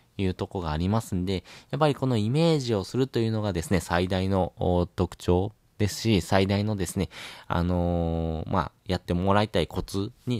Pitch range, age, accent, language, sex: 90-105 Hz, 20-39, native, Japanese, male